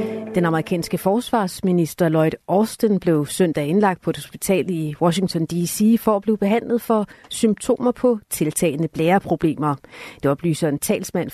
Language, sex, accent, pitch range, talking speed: Danish, female, native, 155-200 Hz, 145 wpm